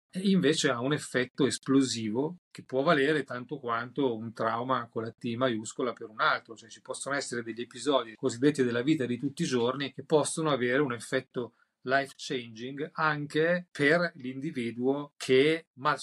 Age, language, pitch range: 30-49, Italian, 125-150 Hz